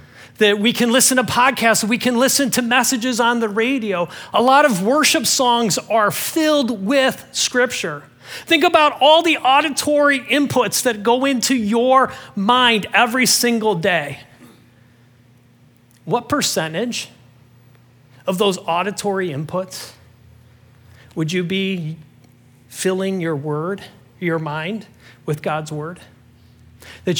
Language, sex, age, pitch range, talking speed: English, male, 40-59, 155-230 Hz, 120 wpm